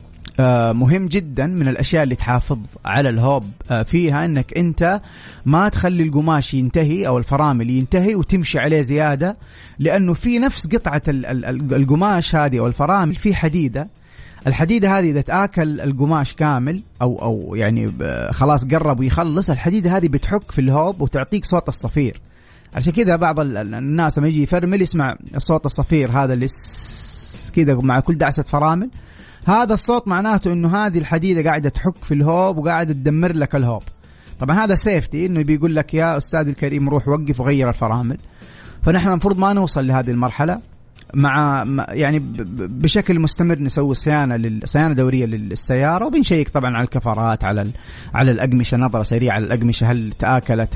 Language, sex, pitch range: Arabic, male, 125-165 Hz